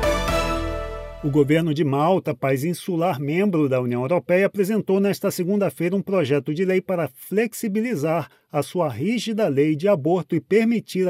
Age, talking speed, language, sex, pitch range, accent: 40-59, 145 wpm, Portuguese, male, 145-200 Hz, Brazilian